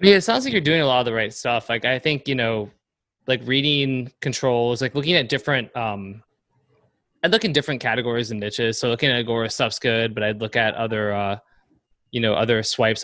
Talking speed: 220 wpm